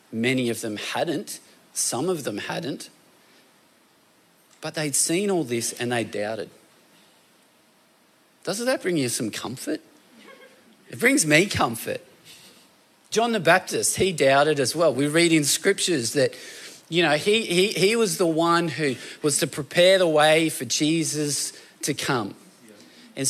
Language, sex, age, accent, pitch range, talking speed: English, male, 40-59, Australian, 150-190 Hz, 145 wpm